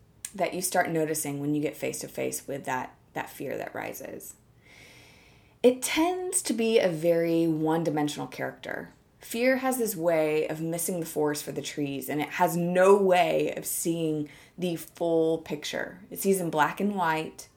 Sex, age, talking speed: female, 20-39, 180 wpm